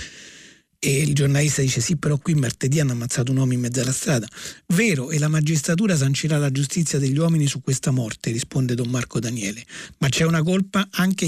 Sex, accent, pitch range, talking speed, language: male, native, 135-160 Hz, 195 wpm, Italian